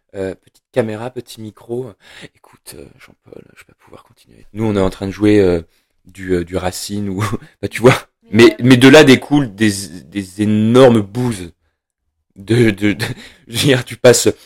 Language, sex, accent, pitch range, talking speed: French, male, French, 95-115 Hz, 185 wpm